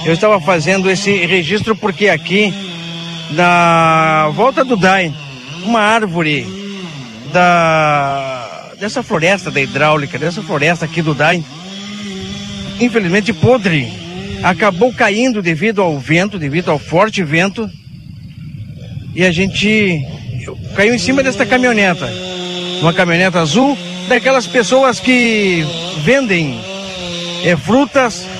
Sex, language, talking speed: male, Portuguese, 105 wpm